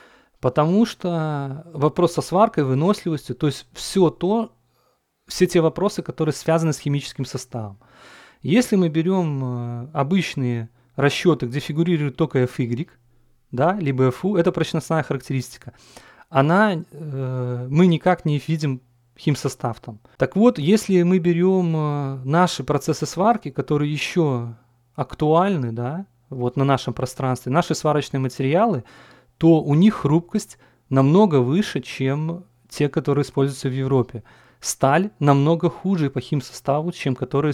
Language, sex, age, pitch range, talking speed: Russian, male, 30-49, 130-170 Hz, 125 wpm